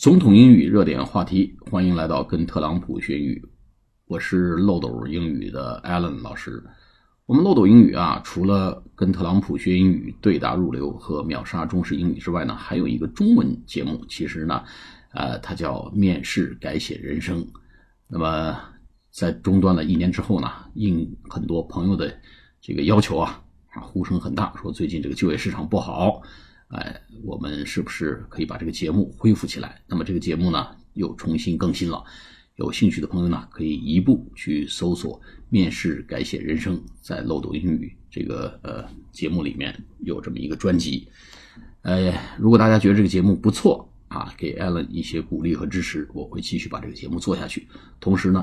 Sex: male